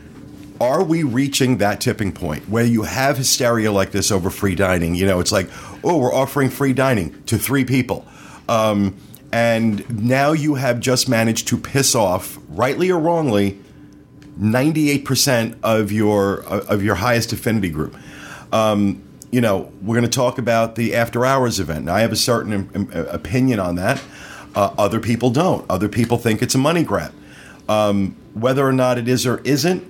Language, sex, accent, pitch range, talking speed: English, male, American, 100-130 Hz, 175 wpm